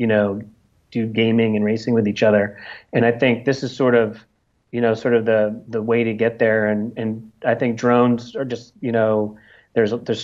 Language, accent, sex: English, American, male